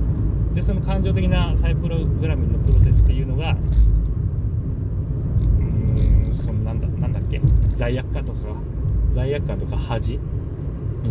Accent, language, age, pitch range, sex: native, Japanese, 30-49, 95-115 Hz, male